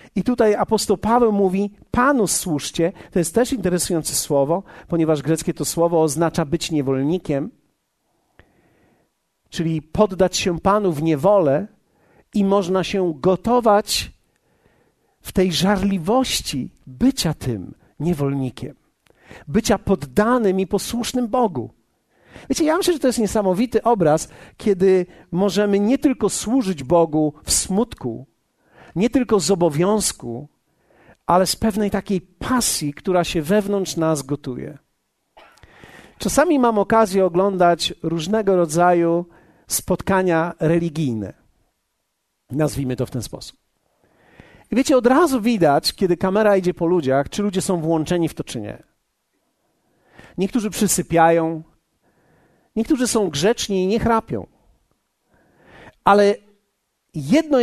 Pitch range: 160-215 Hz